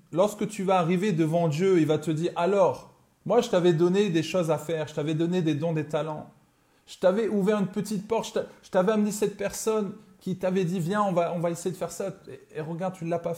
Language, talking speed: French, 245 wpm